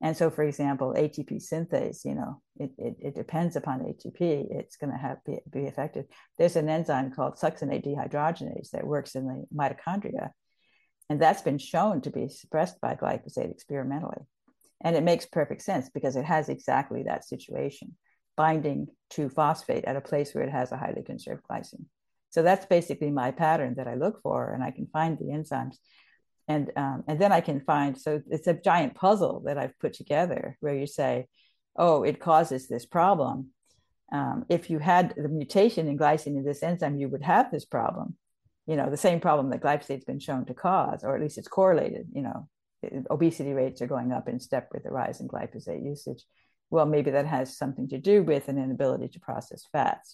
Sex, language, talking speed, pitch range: female, English, 195 wpm, 135-160 Hz